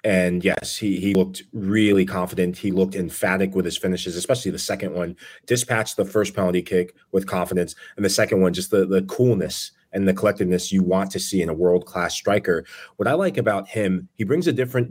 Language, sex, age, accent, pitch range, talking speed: English, male, 30-49, American, 90-115 Hz, 215 wpm